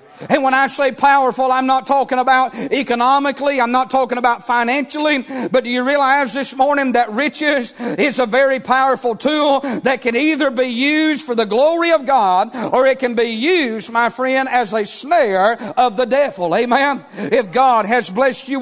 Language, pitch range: English, 245-275 Hz